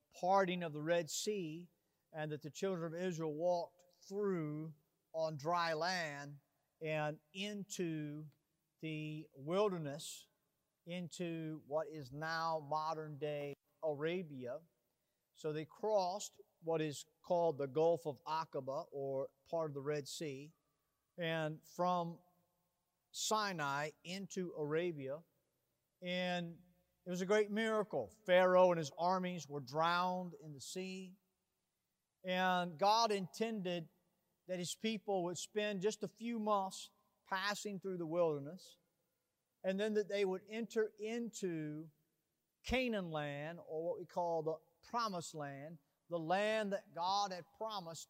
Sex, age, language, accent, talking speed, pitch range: male, 50-69, English, American, 125 wpm, 155-185 Hz